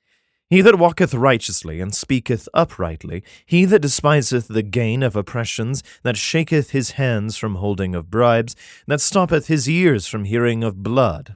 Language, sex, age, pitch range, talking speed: English, male, 30-49, 100-145 Hz, 160 wpm